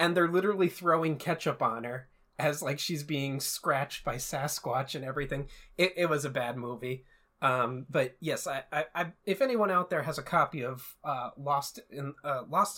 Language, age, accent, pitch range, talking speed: English, 30-49, American, 140-190 Hz, 195 wpm